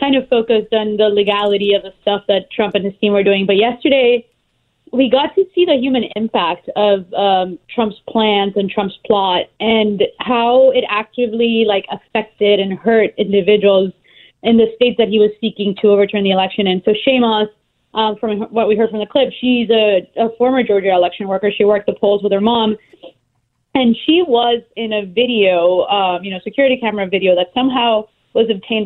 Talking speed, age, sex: 190 wpm, 20-39, female